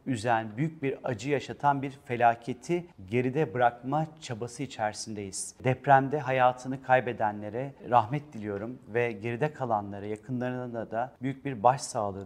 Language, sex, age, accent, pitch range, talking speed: Turkish, male, 40-59, native, 120-145 Hz, 115 wpm